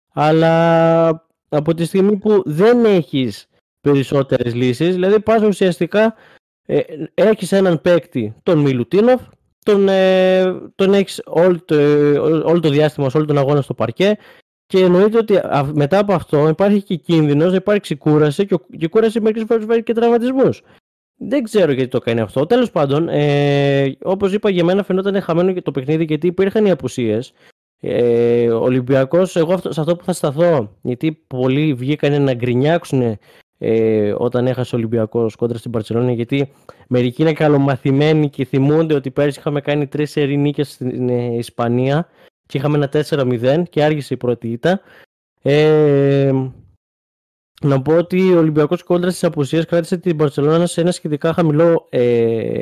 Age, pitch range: 20-39, 130-180 Hz